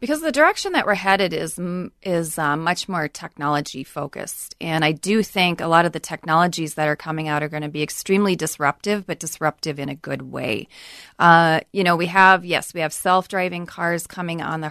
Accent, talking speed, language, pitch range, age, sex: American, 205 wpm, English, 160-200 Hz, 30-49, female